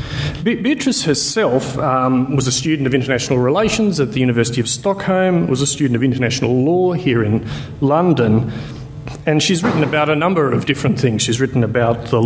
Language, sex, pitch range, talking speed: English, male, 120-145 Hz, 175 wpm